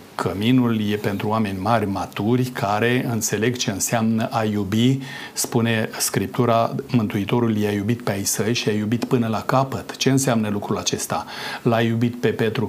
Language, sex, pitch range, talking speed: Romanian, male, 110-125 Hz, 160 wpm